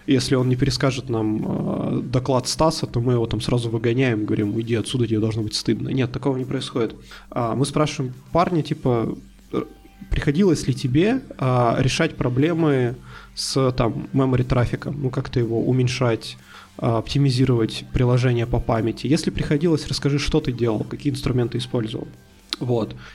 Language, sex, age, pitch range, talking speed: Russian, male, 20-39, 120-150 Hz, 145 wpm